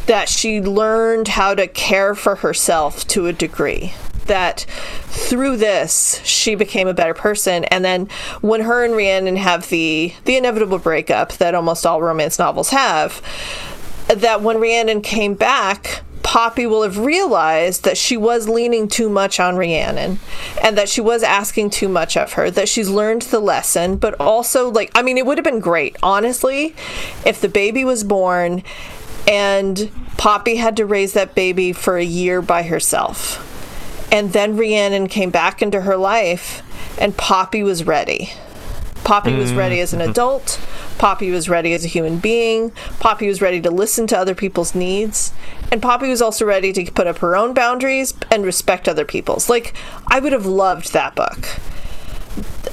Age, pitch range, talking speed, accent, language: 40-59, 180-230 Hz, 170 wpm, American, English